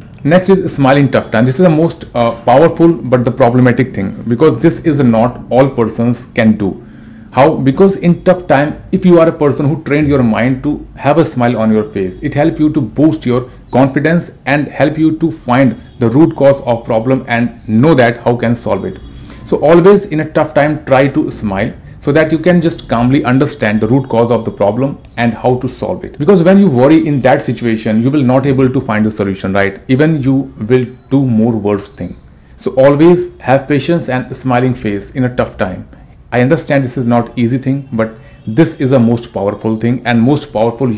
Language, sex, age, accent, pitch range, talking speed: Hindi, male, 40-59, native, 115-150 Hz, 215 wpm